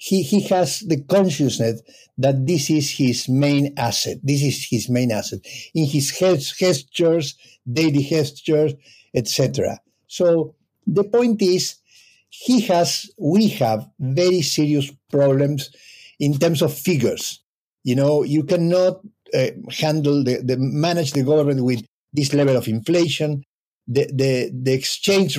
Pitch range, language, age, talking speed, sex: 130-165 Hz, English, 50-69, 140 wpm, male